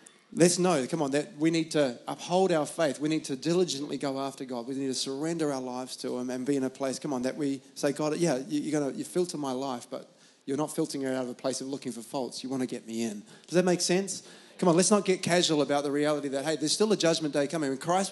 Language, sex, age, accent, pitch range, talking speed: English, male, 30-49, Australian, 140-175 Hz, 285 wpm